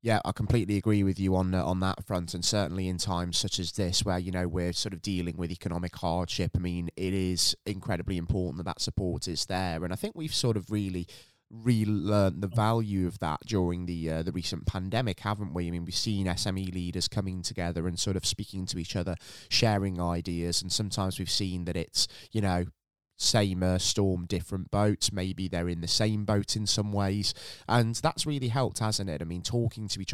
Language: English